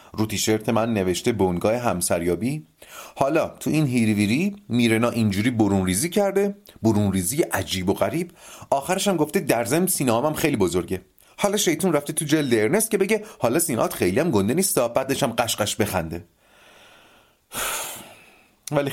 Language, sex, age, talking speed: Persian, male, 30-49, 135 wpm